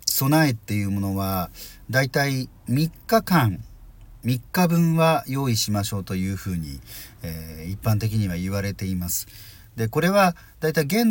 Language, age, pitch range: Japanese, 40-59, 95-125 Hz